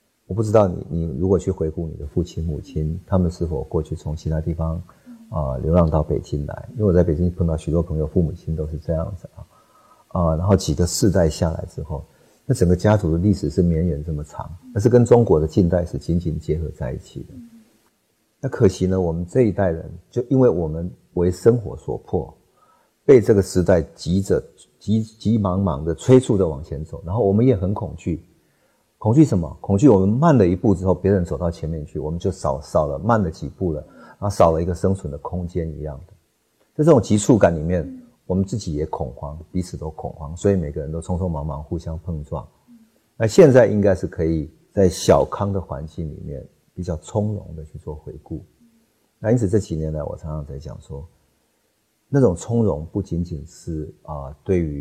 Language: Chinese